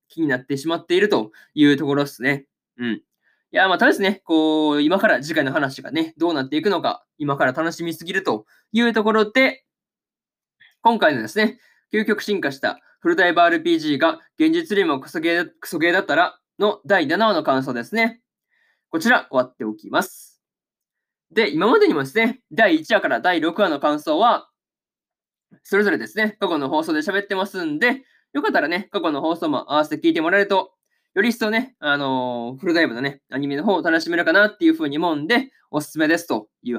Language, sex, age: Japanese, male, 20-39